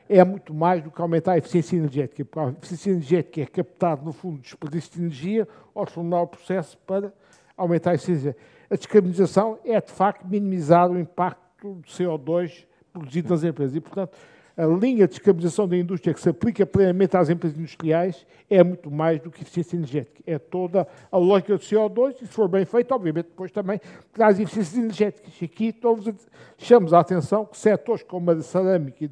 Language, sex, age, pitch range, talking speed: Portuguese, male, 50-69, 160-195 Hz, 190 wpm